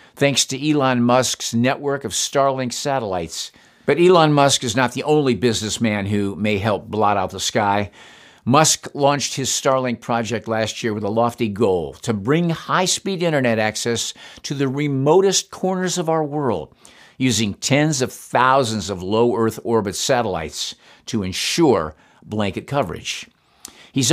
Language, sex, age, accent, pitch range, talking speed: English, male, 50-69, American, 110-145 Hz, 145 wpm